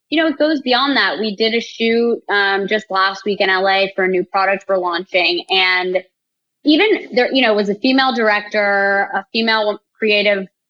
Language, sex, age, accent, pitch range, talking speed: English, female, 20-39, American, 185-225 Hz, 195 wpm